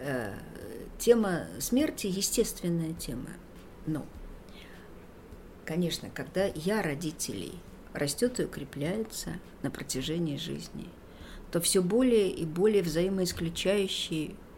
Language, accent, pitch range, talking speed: Russian, native, 160-200 Hz, 85 wpm